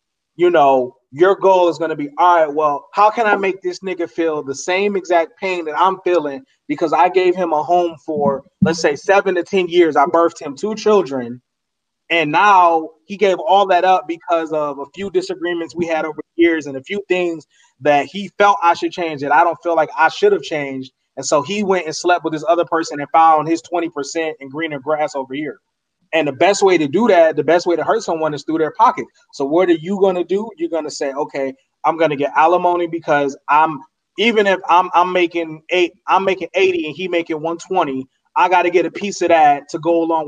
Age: 20-39